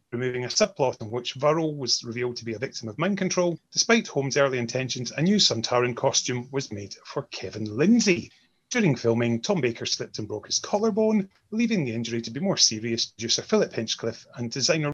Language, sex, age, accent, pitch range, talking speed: English, male, 30-49, British, 115-180 Hz, 195 wpm